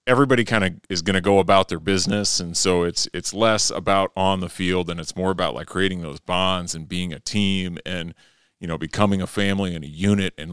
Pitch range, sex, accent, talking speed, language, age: 85-105 Hz, male, American, 235 wpm, English, 30-49